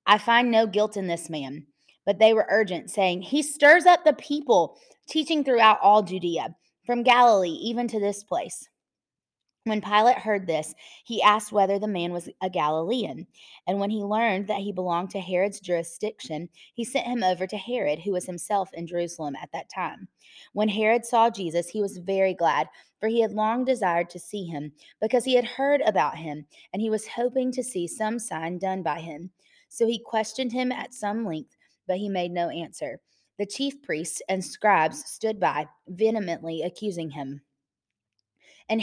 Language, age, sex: English, 20-39, female